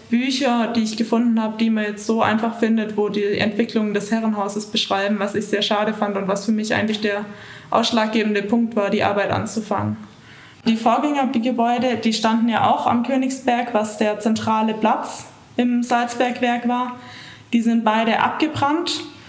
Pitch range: 205-240 Hz